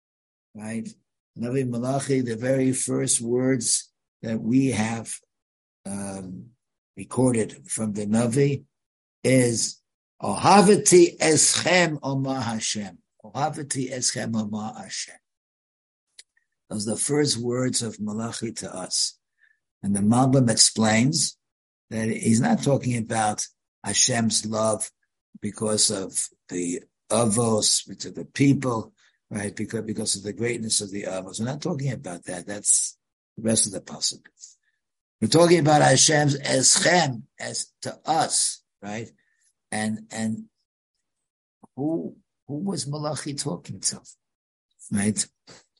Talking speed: 120 wpm